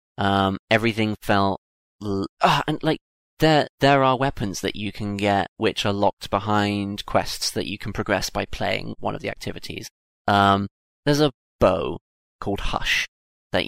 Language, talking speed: English, 160 wpm